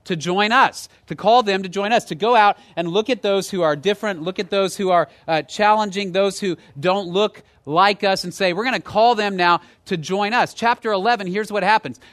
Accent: American